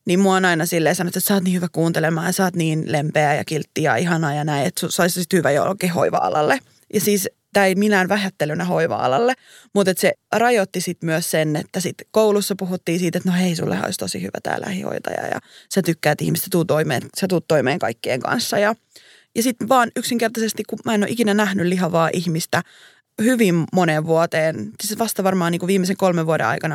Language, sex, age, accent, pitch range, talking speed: Finnish, female, 20-39, native, 165-200 Hz, 200 wpm